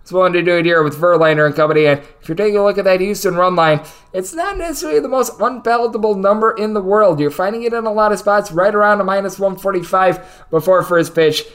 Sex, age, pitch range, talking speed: male, 20-39, 140-170 Hz, 245 wpm